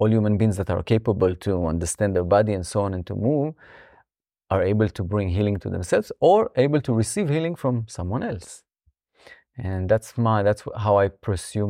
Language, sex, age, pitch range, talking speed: Czech, male, 30-49, 100-120 Hz, 195 wpm